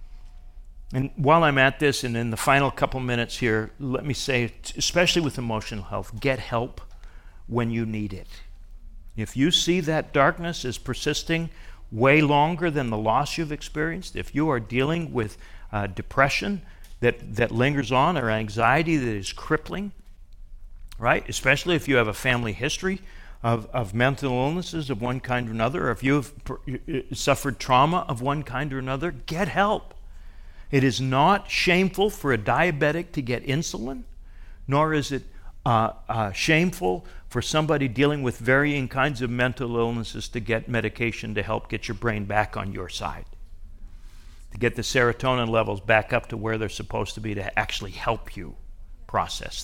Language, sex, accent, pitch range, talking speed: English, male, American, 105-140 Hz, 170 wpm